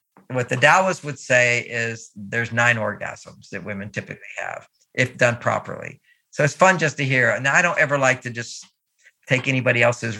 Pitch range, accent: 115-140 Hz, American